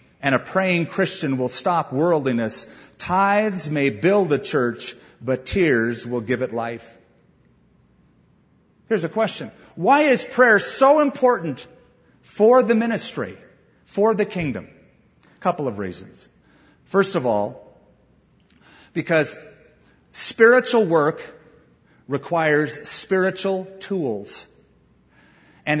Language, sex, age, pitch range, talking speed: English, male, 40-59, 145-220 Hz, 105 wpm